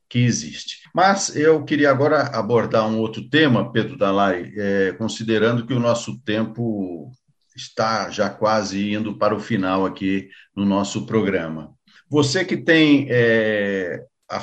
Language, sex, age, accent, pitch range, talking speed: Portuguese, male, 50-69, Brazilian, 105-140 Hz, 135 wpm